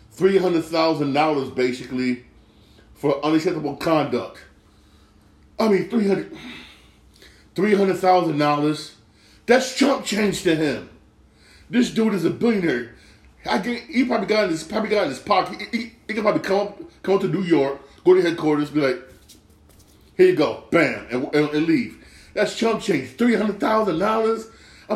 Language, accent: English, American